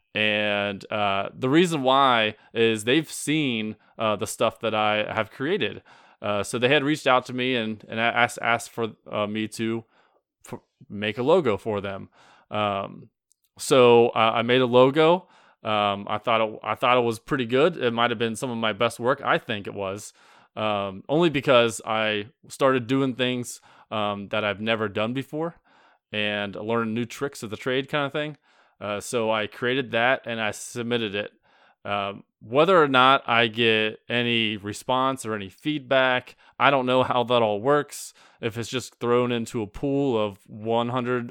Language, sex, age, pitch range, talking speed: English, male, 20-39, 105-130 Hz, 180 wpm